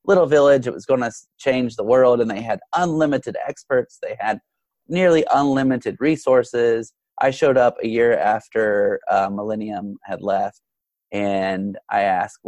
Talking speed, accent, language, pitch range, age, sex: 150 wpm, American, English, 105-130 Hz, 30-49, male